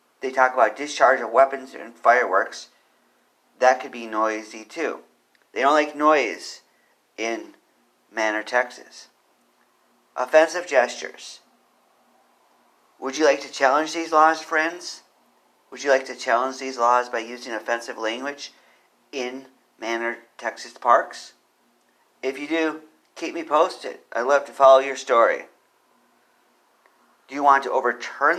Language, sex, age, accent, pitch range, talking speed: English, male, 40-59, American, 120-150 Hz, 125 wpm